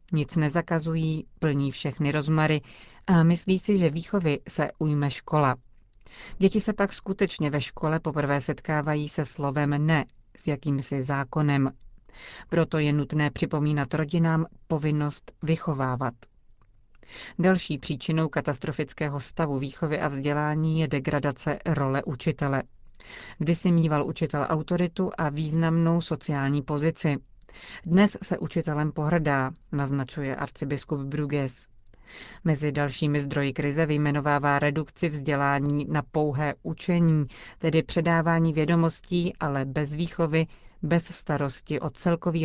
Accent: native